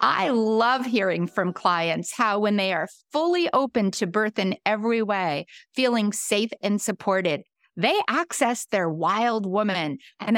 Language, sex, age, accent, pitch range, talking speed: English, female, 50-69, American, 195-235 Hz, 150 wpm